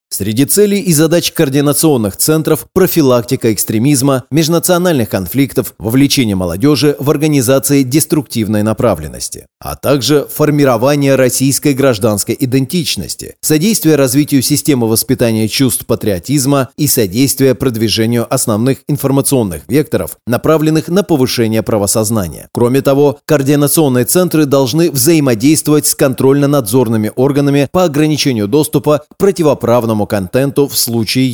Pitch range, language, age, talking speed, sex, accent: 115-155 Hz, Russian, 30-49, 105 wpm, male, native